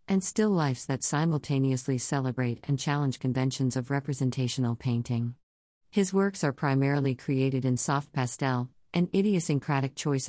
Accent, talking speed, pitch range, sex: American, 135 wpm, 125-160 Hz, female